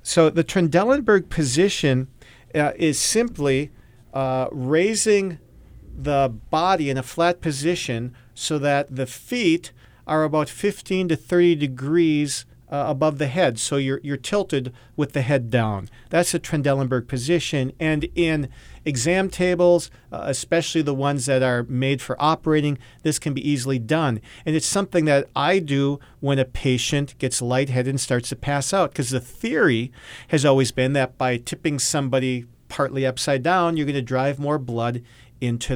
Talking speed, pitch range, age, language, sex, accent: 160 wpm, 125-160 Hz, 40-59, English, male, American